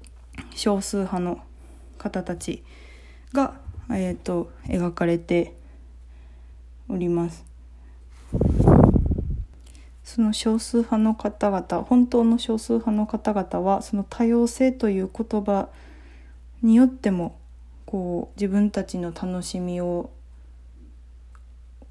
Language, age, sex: Japanese, 20-39, female